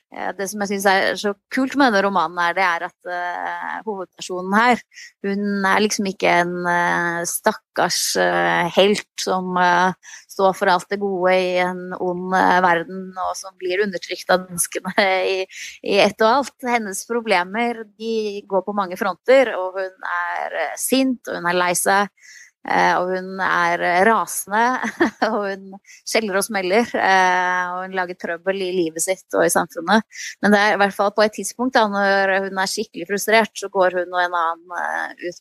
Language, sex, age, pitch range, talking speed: English, female, 20-39, 180-205 Hz, 160 wpm